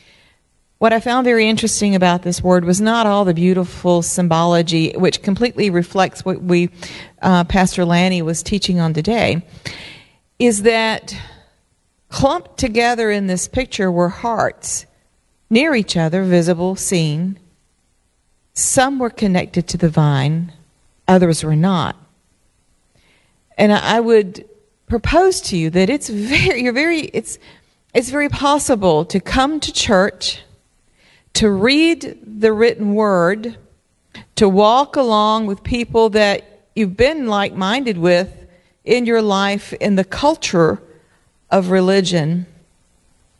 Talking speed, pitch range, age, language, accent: 125 wpm, 175-225 Hz, 50-69, English, American